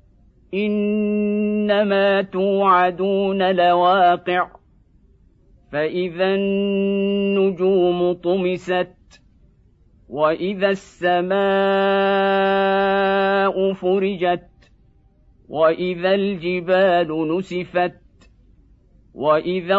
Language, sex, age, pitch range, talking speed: Arabic, male, 50-69, 180-200 Hz, 40 wpm